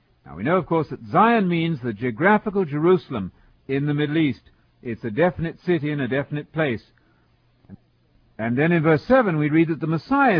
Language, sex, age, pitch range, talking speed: English, male, 60-79, 125-175 Hz, 185 wpm